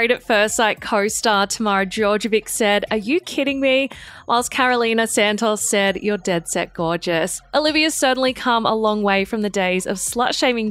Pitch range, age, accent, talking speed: 200-255 Hz, 20-39, Australian, 175 wpm